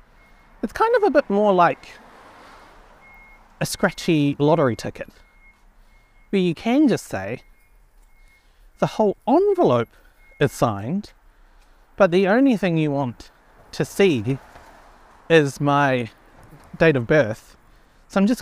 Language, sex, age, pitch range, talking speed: English, male, 30-49, 125-195 Hz, 120 wpm